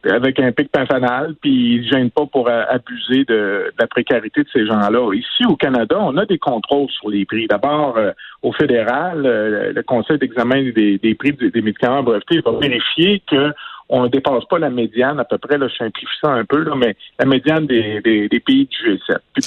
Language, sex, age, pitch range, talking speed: French, male, 50-69, 125-170 Hz, 220 wpm